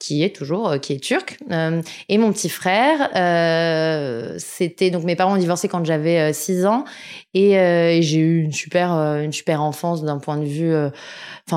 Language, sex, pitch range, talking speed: French, female, 160-200 Hz, 200 wpm